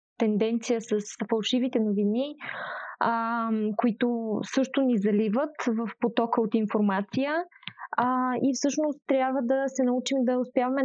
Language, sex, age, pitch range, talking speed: Bulgarian, female, 20-39, 225-260 Hz, 120 wpm